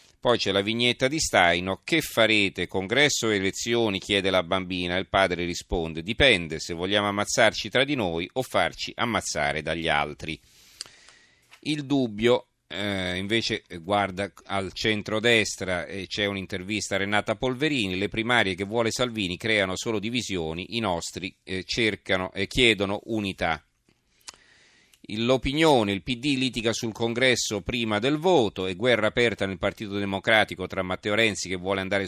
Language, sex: Italian, male